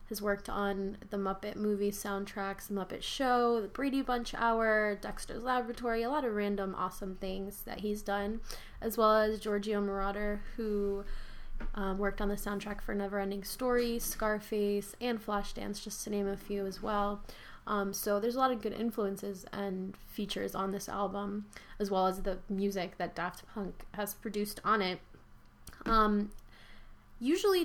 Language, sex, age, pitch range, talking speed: English, female, 20-39, 195-215 Hz, 165 wpm